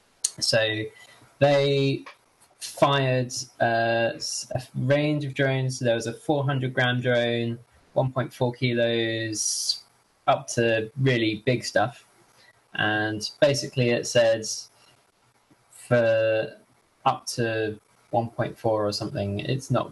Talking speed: 100 wpm